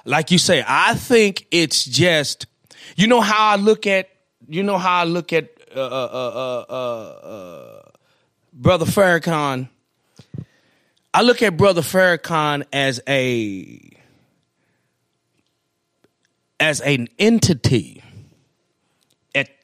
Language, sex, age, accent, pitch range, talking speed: English, male, 30-49, American, 130-190 Hz, 115 wpm